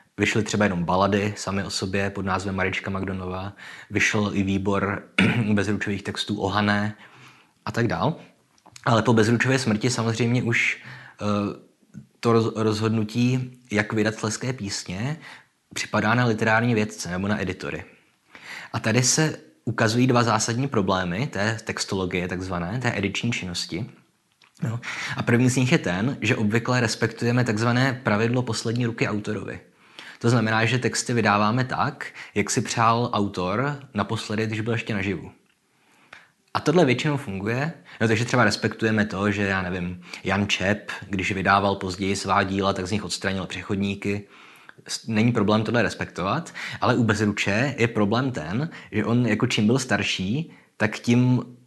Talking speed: 140 wpm